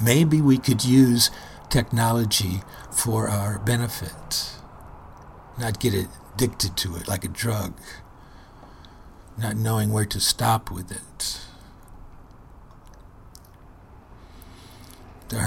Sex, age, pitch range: male, 50-69, 95-115 Hz